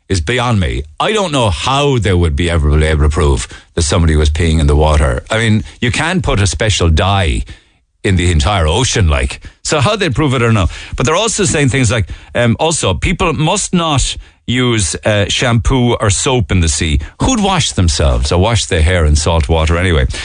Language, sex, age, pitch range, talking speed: English, male, 50-69, 85-125 Hz, 210 wpm